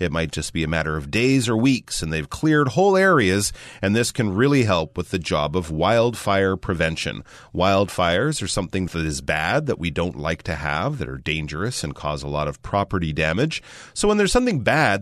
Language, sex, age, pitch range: Chinese, male, 30-49, 80-120 Hz